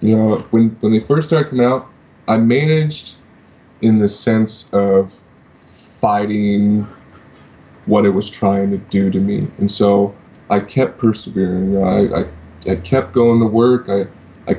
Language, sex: English, male